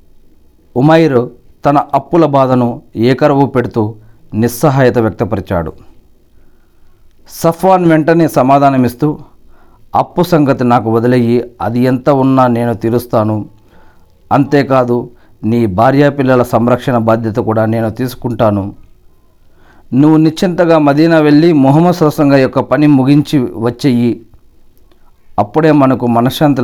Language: Telugu